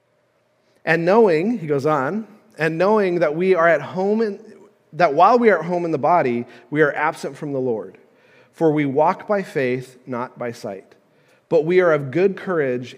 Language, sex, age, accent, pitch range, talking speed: English, male, 40-59, American, 145-200 Hz, 190 wpm